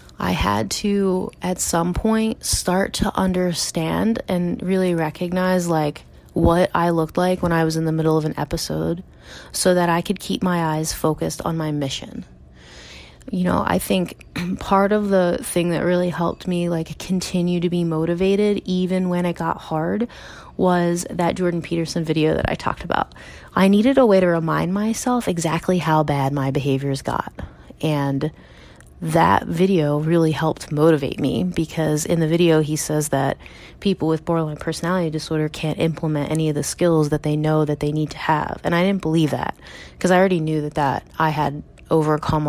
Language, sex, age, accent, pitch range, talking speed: English, female, 20-39, American, 145-180 Hz, 180 wpm